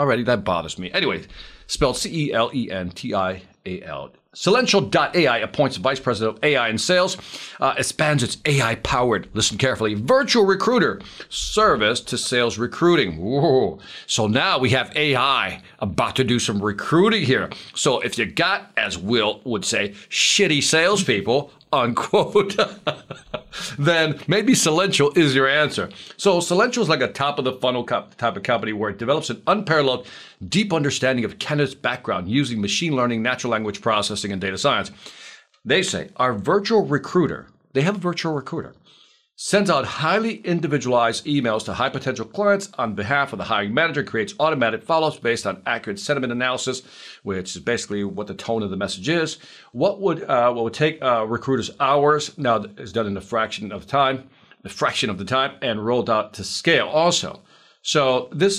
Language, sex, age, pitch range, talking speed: English, male, 50-69, 115-160 Hz, 165 wpm